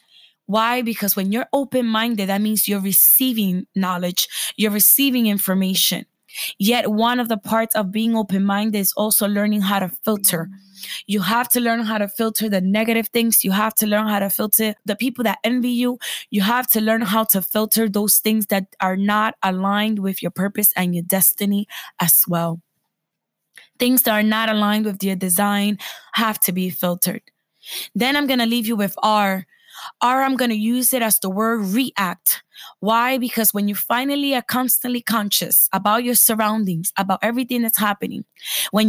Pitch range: 195-235 Hz